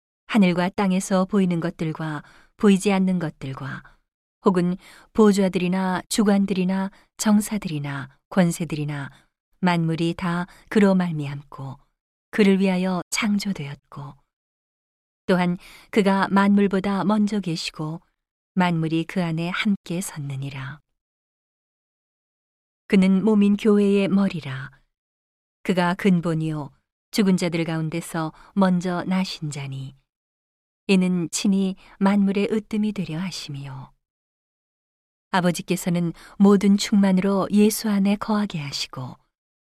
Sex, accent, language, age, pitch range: female, native, Korean, 40-59, 160-195 Hz